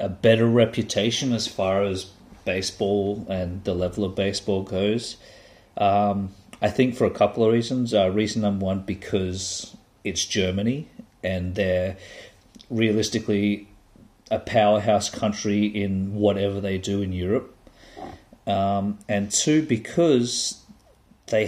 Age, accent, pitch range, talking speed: 40-59, Australian, 95-105 Hz, 125 wpm